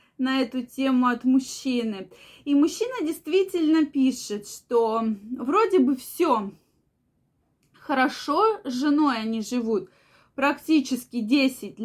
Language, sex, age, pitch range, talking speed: Russian, female, 20-39, 245-310 Hz, 100 wpm